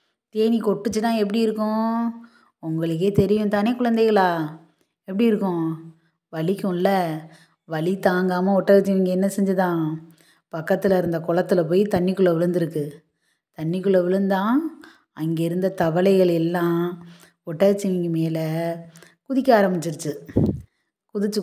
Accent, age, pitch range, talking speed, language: native, 20-39, 165-210 Hz, 90 wpm, Tamil